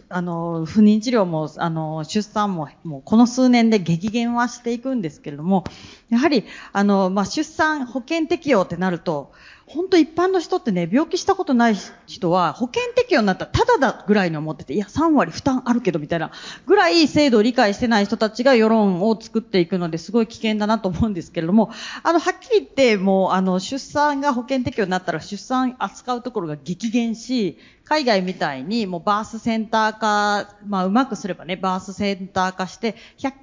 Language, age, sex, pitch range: Japanese, 40-59, female, 185-265 Hz